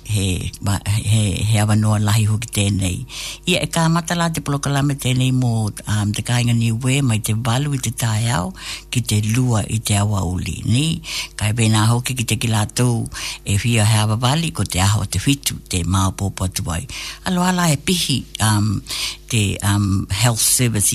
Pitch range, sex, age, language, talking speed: 105-130 Hz, female, 60-79, English, 180 wpm